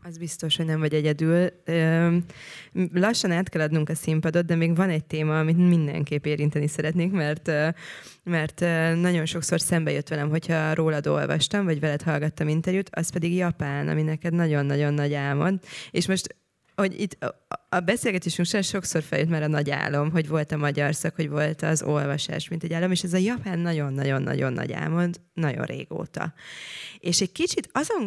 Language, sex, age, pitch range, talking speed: Hungarian, female, 20-39, 150-175 Hz, 170 wpm